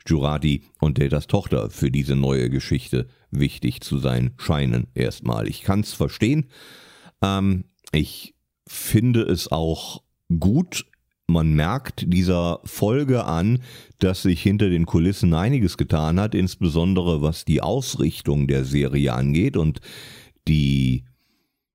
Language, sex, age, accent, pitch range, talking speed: German, male, 40-59, German, 75-95 Hz, 125 wpm